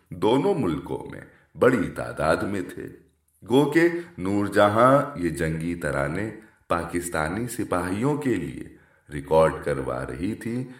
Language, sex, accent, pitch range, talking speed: English, male, Indian, 85-125 Hz, 120 wpm